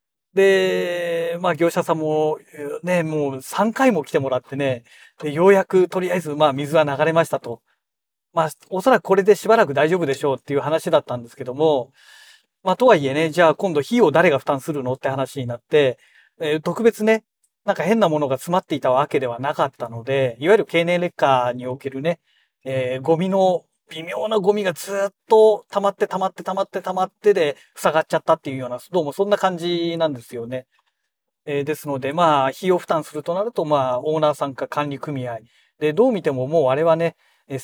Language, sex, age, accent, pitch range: Japanese, male, 40-59, native, 135-190 Hz